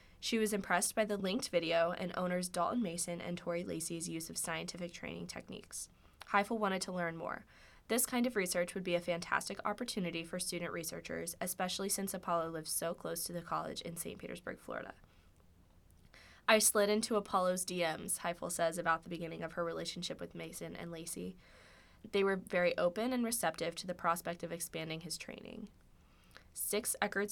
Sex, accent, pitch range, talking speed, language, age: female, American, 165-195 Hz, 180 wpm, English, 20-39